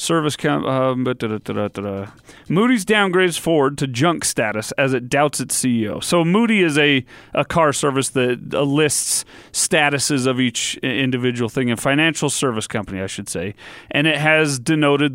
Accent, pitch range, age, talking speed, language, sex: American, 130-165 Hz, 40-59, 155 wpm, English, male